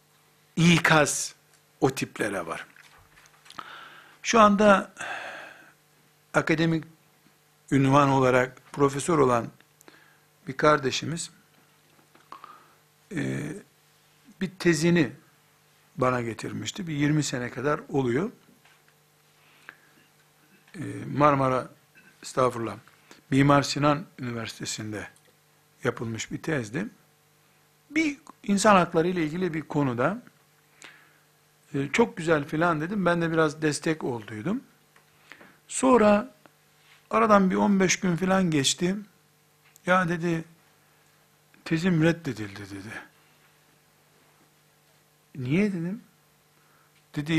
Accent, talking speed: native, 80 wpm